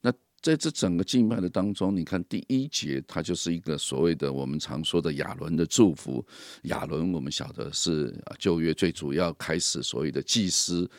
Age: 50-69